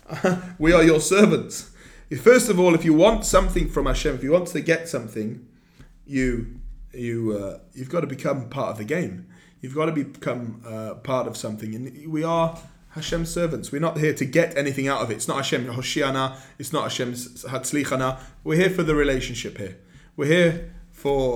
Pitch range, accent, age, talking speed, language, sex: 130-175 Hz, British, 30-49, 195 wpm, English, male